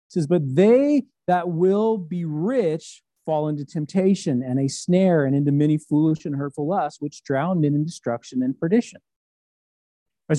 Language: English